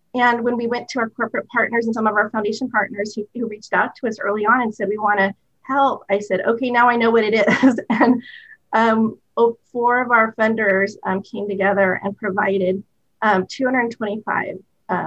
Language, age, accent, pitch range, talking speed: English, 30-49, American, 195-220 Hz, 200 wpm